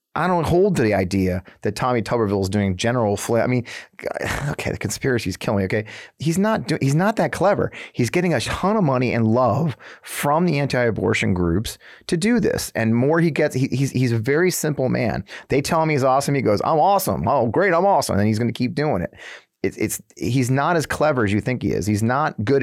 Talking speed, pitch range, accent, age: 230 wpm, 100-130 Hz, American, 30-49